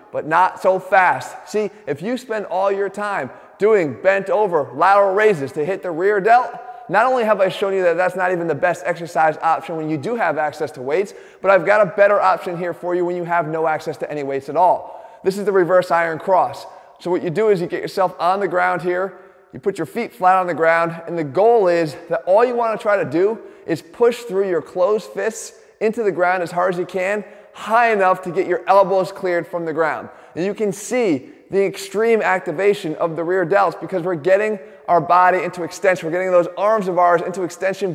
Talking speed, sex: 235 wpm, male